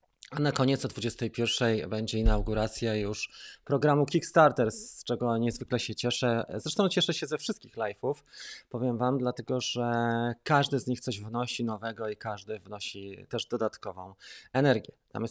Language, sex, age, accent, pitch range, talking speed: Polish, male, 20-39, native, 110-145 Hz, 150 wpm